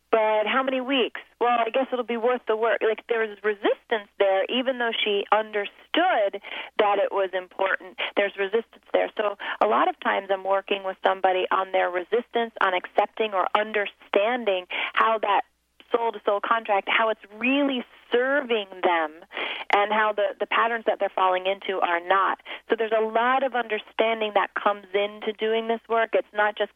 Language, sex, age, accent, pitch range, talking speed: English, female, 30-49, American, 200-240 Hz, 175 wpm